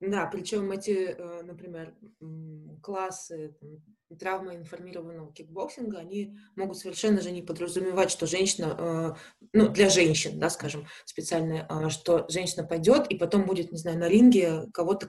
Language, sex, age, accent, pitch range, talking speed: Russian, female, 20-39, native, 170-205 Hz, 130 wpm